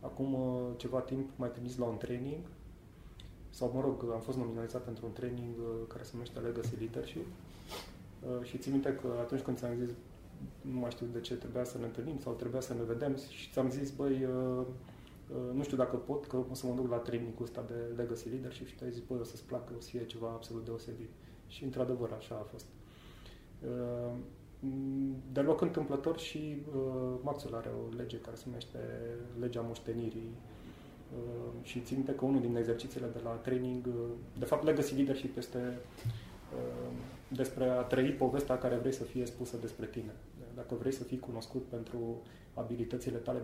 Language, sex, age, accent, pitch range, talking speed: English, male, 30-49, Romanian, 115-130 Hz, 190 wpm